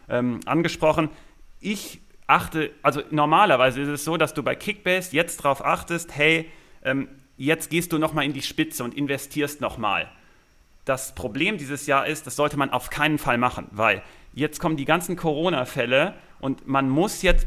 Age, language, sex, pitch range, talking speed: 40-59, German, male, 130-165 Hz, 180 wpm